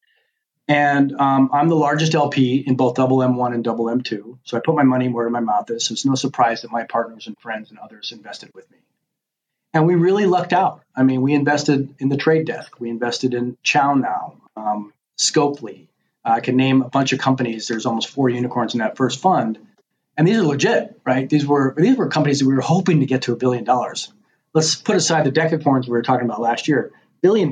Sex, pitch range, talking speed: male, 125-155 Hz, 225 wpm